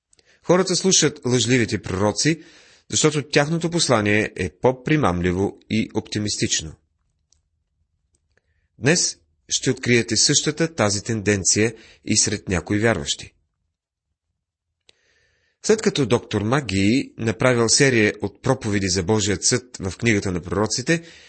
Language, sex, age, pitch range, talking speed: Bulgarian, male, 30-49, 90-130 Hz, 100 wpm